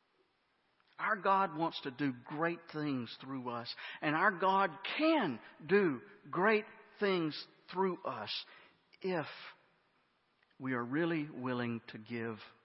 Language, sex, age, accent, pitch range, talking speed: English, male, 50-69, American, 125-170 Hz, 120 wpm